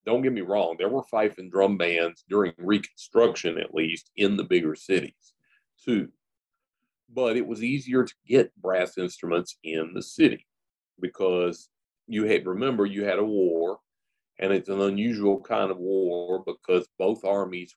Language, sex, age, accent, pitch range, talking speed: English, male, 40-59, American, 90-110 Hz, 160 wpm